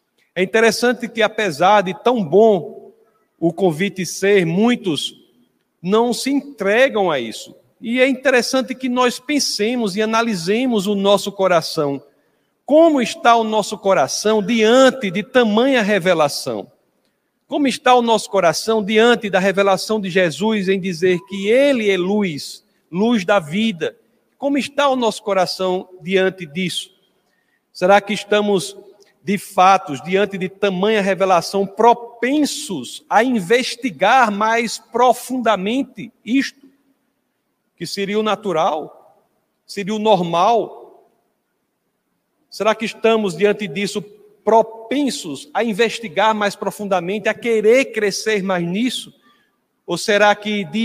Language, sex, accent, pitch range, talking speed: Portuguese, male, Brazilian, 195-235 Hz, 120 wpm